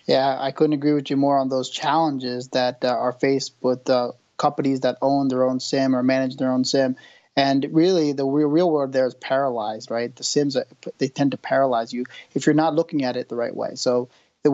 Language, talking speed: English, 225 wpm